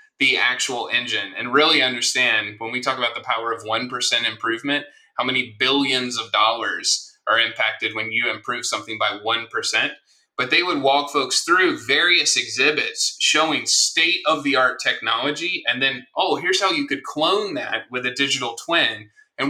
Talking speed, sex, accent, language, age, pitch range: 170 wpm, male, American, English, 20-39, 120-160 Hz